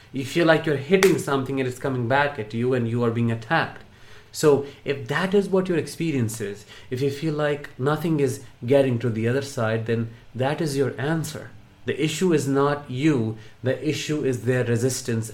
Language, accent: English, Indian